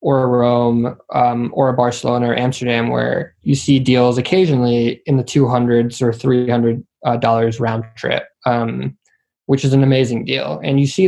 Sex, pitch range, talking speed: male, 120-140 Hz, 170 wpm